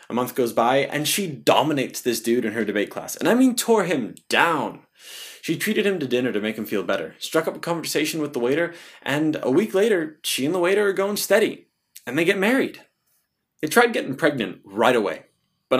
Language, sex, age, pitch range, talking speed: English, male, 20-39, 120-175 Hz, 220 wpm